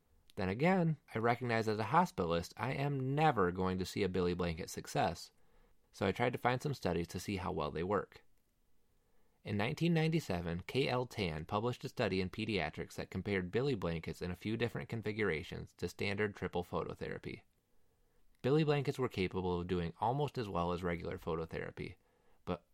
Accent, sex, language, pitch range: American, male, English, 90-125 Hz